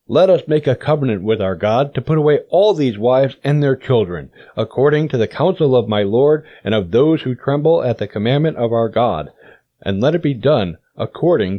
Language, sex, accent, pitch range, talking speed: English, male, American, 115-150 Hz, 210 wpm